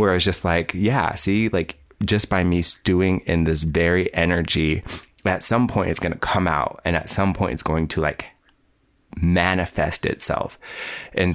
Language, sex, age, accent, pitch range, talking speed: English, male, 20-39, American, 80-90 Hz, 185 wpm